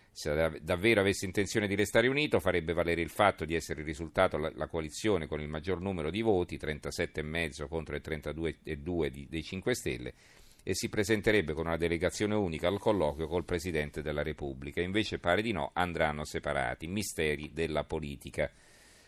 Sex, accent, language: male, native, Italian